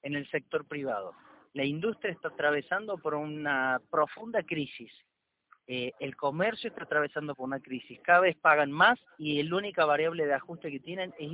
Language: Spanish